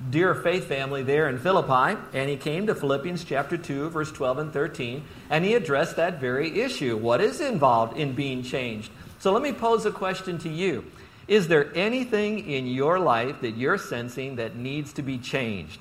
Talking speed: 195 wpm